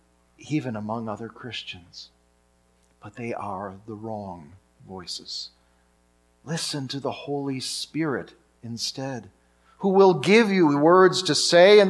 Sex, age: male, 40-59